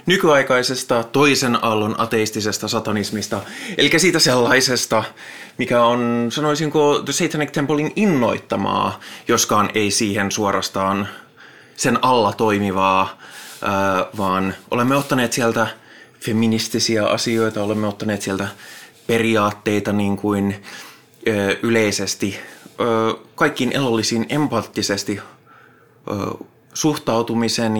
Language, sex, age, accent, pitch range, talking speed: Finnish, male, 20-39, native, 105-150 Hz, 95 wpm